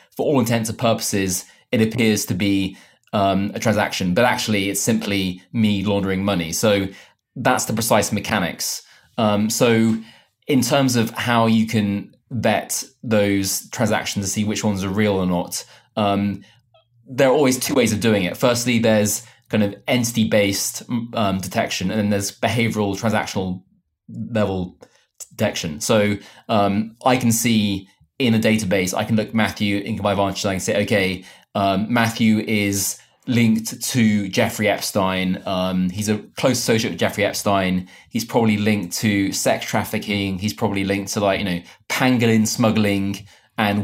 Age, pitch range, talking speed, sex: 20-39, 100-115 Hz, 155 wpm, male